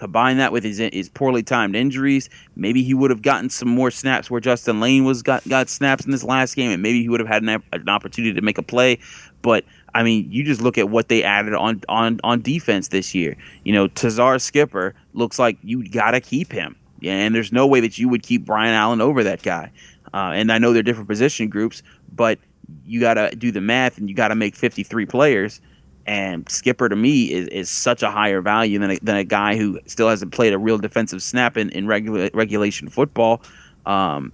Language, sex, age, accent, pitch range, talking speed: English, male, 30-49, American, 100-120 Hz, 230 wpm